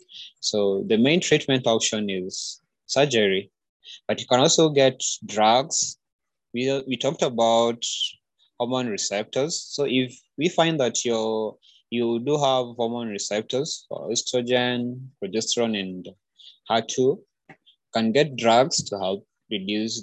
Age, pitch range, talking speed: 20-39, 100-130 Hz, 125 wpm